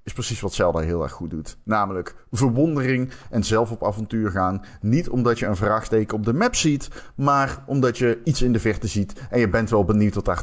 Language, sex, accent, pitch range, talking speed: Dutch, male, Dutch, 110-130 Hz, 225 wpm